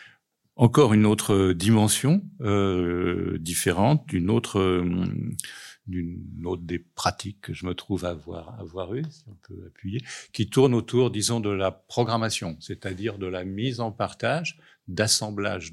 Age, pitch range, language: 50-69, 95-120 Hz, French